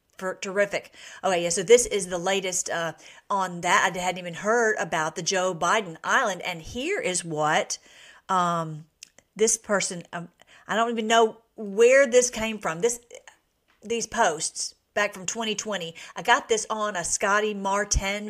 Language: English